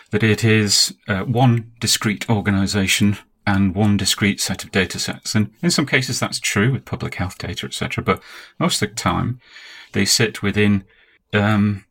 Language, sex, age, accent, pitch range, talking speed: English, male, 30-49, British, 100-115 Hz, 170 wpm